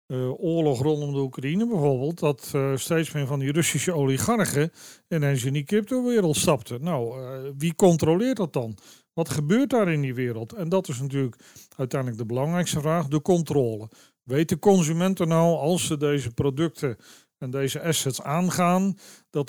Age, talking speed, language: 40-59, 165 wpm, Dutch